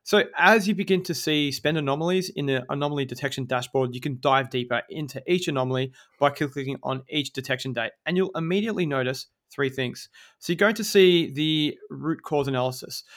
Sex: male